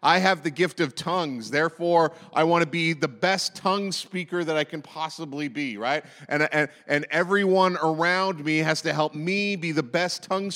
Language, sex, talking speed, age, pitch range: English, male, 200 wpm, 30-49, 160-190 Hz